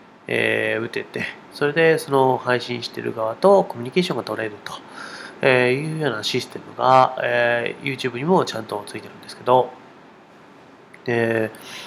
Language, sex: Japanese, male